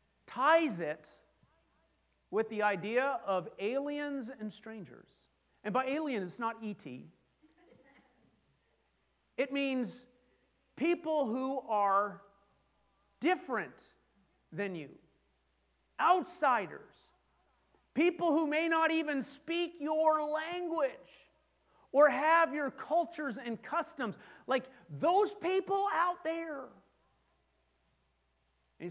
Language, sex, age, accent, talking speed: English, male, 40-59, American, 90 wpm